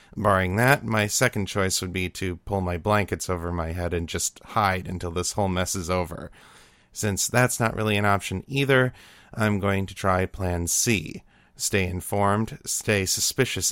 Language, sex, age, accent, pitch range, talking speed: English, male, 30-49, American, 90-105 Hz, 175 wpm